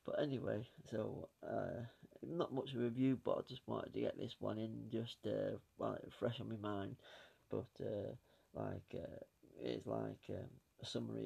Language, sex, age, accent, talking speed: English, male, 30-49, British, 185 wpm